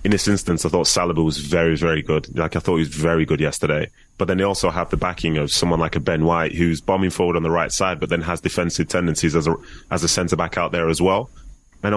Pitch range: 80-95 Hz